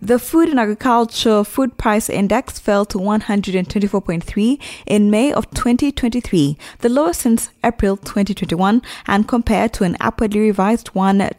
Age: 20-39